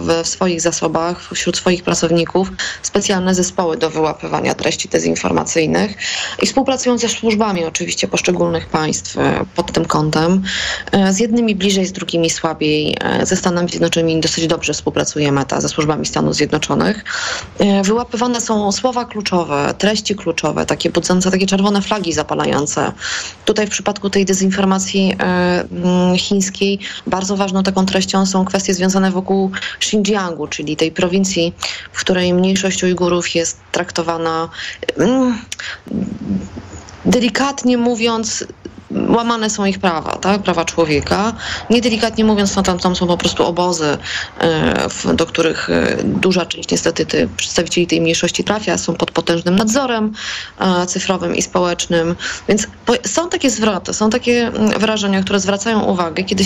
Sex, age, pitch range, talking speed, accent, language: female, 20-39, 175-215 Hz, 130 wpm, native, Polish